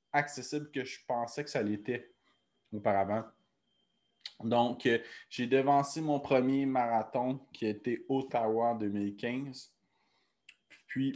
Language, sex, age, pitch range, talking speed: French, male, 20-39, 110-135 Hz, 115 wpm